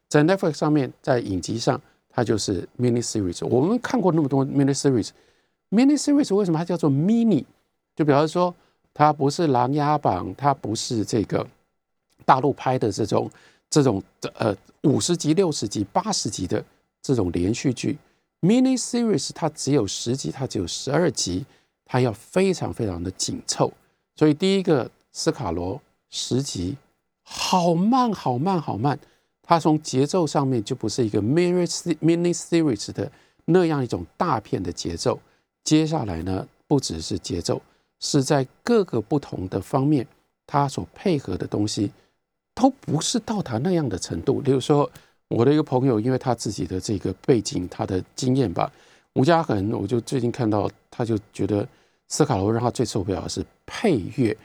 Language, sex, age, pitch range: Chinese, male, 50-69, 110-165 Hz